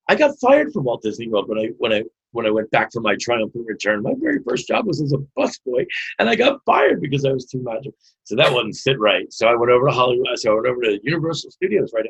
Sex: male